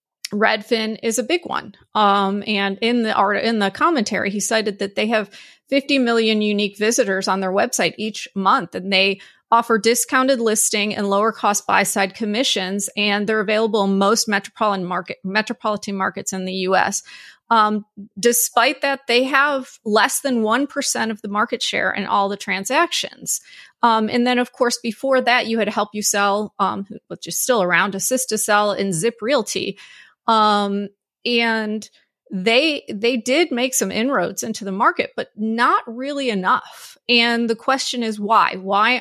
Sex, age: female, 30-49